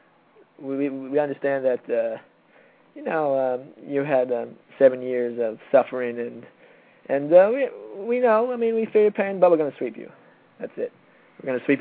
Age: 20-39